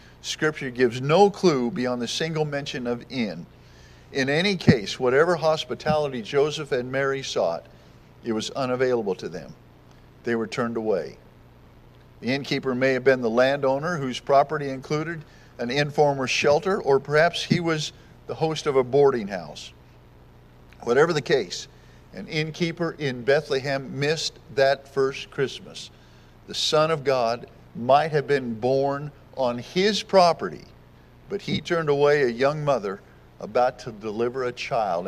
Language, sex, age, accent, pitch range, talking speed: English, male, 50-69, American, 130-160 Hz, 145 wpm